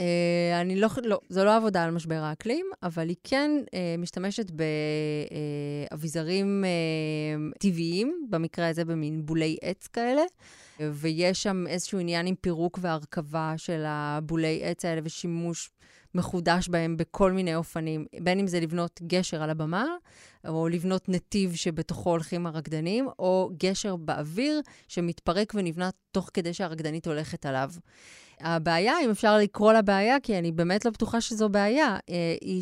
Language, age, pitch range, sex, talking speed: Hebrew, 20-39, 165-195 Hz, female, 145 wpm